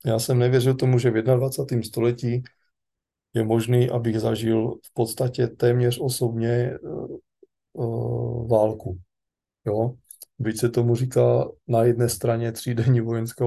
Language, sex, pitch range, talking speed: Slovak, male, 115-130 Hz, 120 wpm